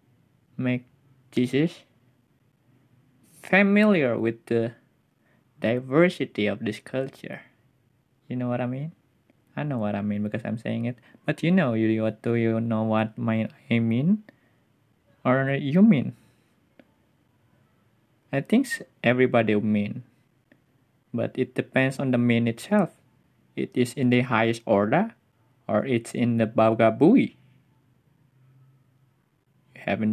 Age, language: 20-39, English